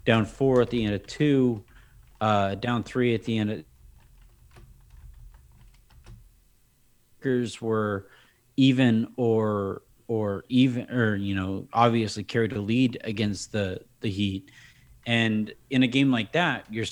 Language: English